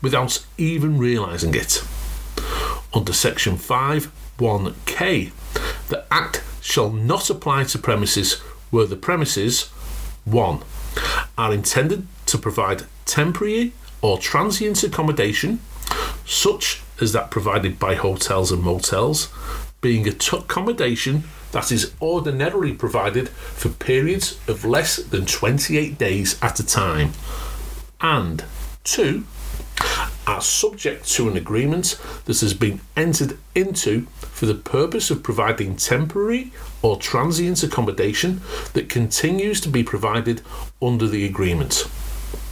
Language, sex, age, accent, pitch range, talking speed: English, male, 40-59, British, 95-155 Hz, 115 wpm